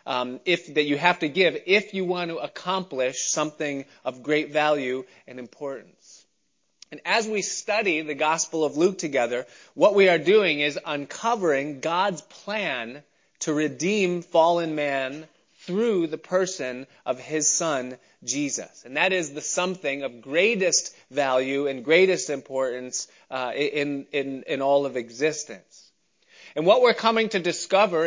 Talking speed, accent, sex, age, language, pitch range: 150 wpm, American, male, 30-49, English, 135-175 Hz